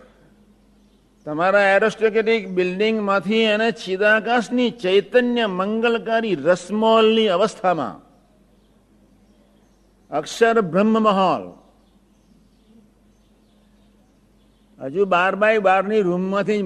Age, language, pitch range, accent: 60-79, Gujarati, 150-210 Hz, native